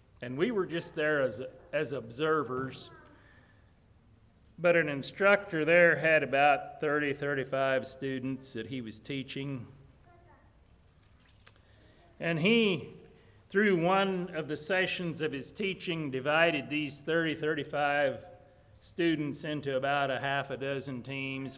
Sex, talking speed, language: male, 120 wpm, English